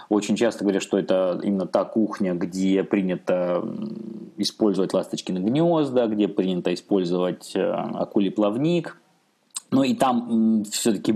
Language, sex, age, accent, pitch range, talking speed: Russian, male, 20-39, native, 100-125 Hz, 120 wpm